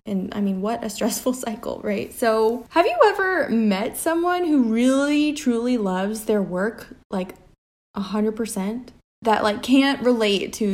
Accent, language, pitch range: American, English, 205-260 Hz